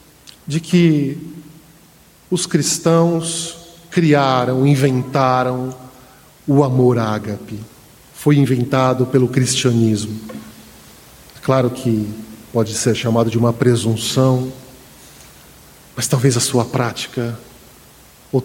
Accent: Brazilian